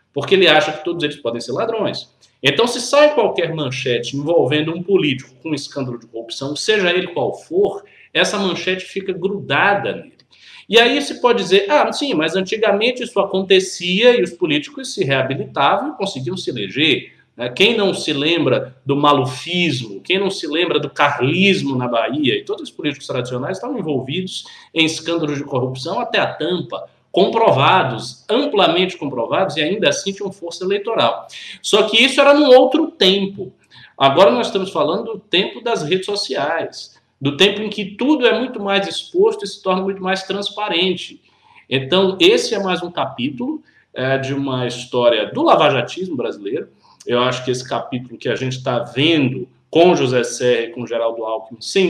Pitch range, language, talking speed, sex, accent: 135-200 Hz, Portuguese, 170 wpm, male, Brazilian